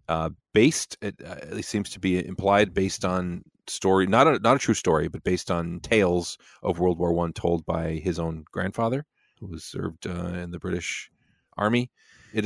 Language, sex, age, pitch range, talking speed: English, male, 30-49, 90-100 Hz, 190 wpm